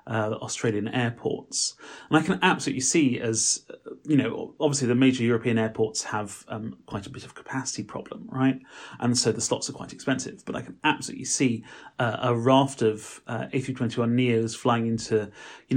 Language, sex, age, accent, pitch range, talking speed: English, male, 30-49, British, 110-135 Hz, 180 wpm